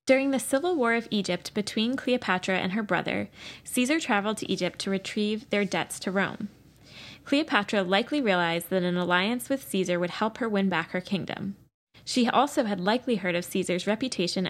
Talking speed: 180 wpm